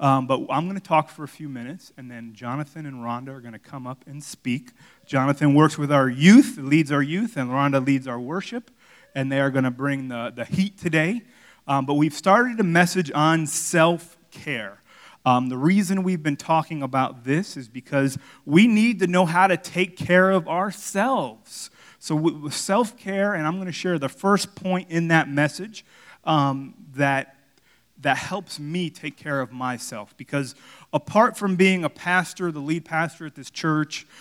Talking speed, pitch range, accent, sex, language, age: 190 wpm, 140-175 Hz, American, male, English, 30-49